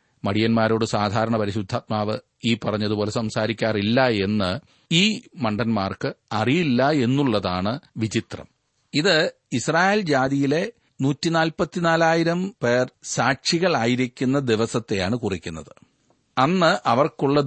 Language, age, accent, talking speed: Malayalam, 40-59, native, 75 wpm